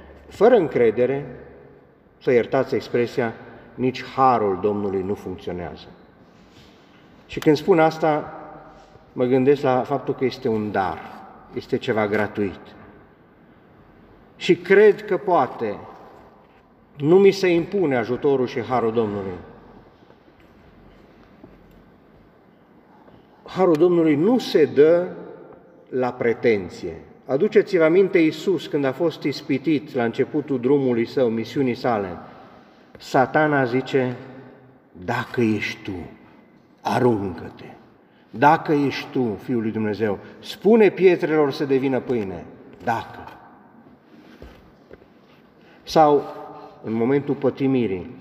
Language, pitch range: Romanian, 110-155 Hz